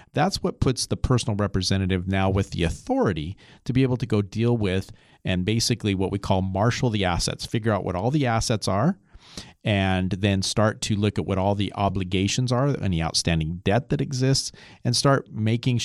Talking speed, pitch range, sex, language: 195 wpm, 95-120 Hz, male, English